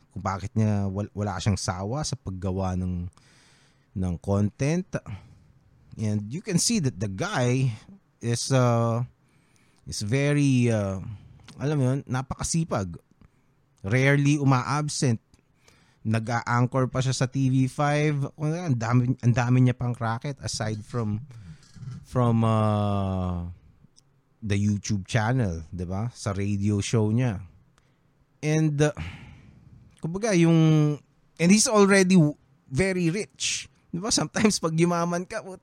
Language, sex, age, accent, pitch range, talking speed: Filipino, male, 20-39, native, 110-150 Hz, 115 wpm